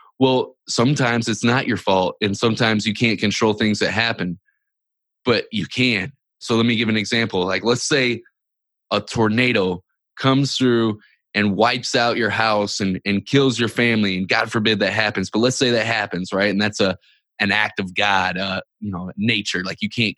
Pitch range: 100-115 Hz